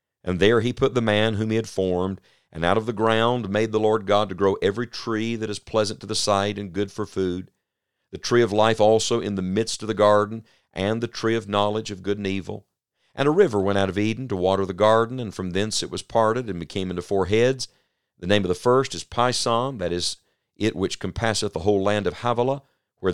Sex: male